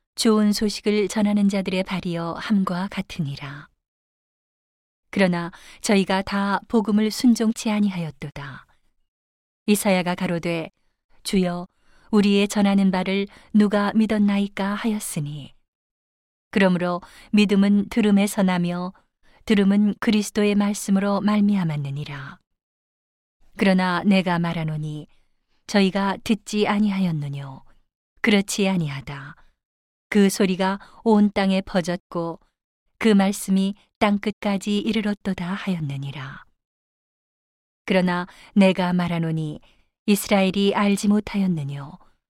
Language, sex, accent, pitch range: Korean, female, native, 175-205 Hz